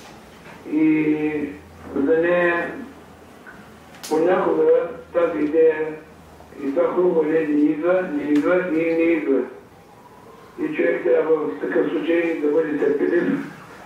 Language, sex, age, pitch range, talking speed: Bulgarian, male, 60-79, 150-185 Hz, 125 wpm